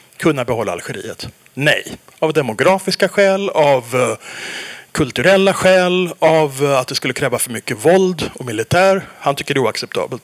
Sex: male